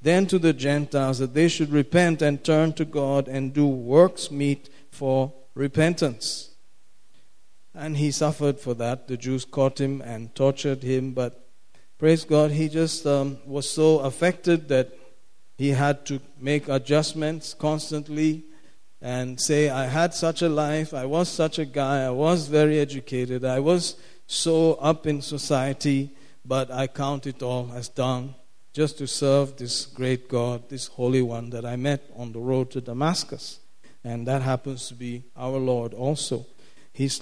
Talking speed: 165 wpm